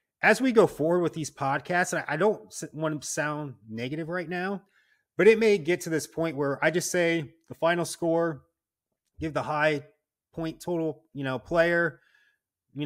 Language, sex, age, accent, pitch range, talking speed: English, male, 30-49, American, 125-170 Hz, 180 wpm